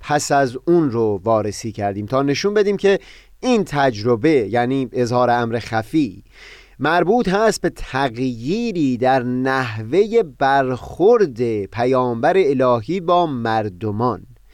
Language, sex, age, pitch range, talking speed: Persian, male, 30-49, 125-165 Hz, 110 wpm